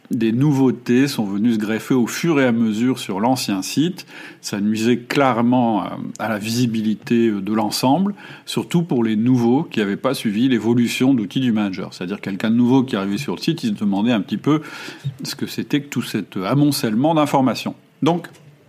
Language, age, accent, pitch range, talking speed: French, 40-59, French, 110-140 Hz, 185 wpm